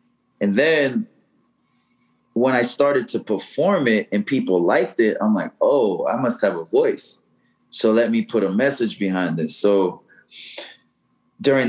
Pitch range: 110-175 Hz